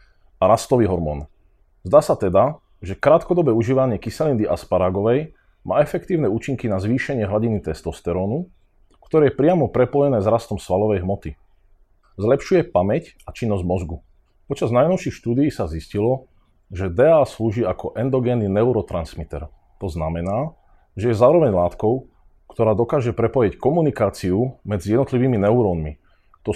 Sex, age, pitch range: male, 40-59, 90-125 Hz